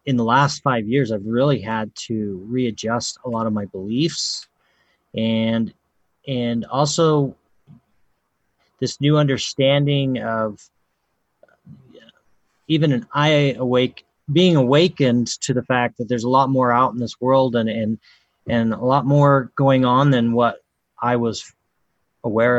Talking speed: 140 wpm